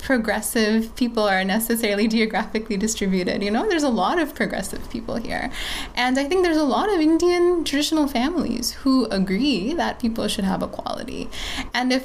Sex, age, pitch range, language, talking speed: female, 20-39, 200-260 Hz, English, 170 wpm